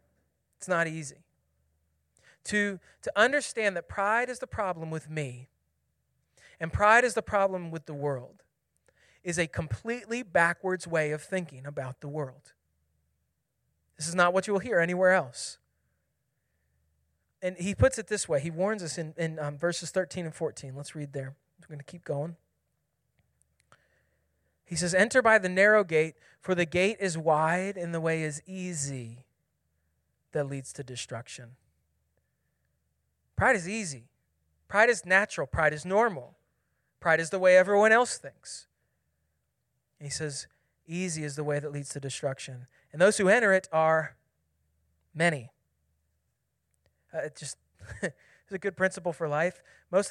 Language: English